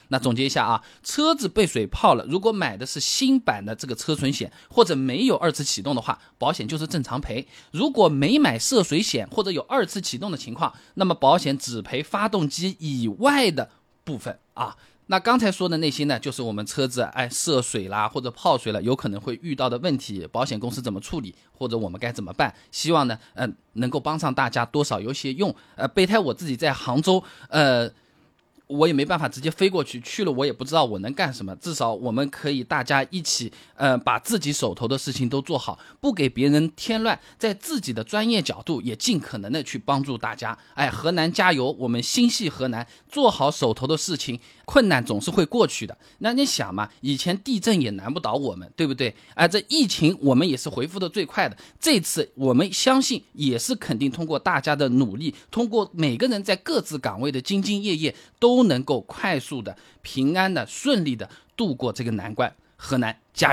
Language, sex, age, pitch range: Chinese, male, 20-39, 125-185 Hz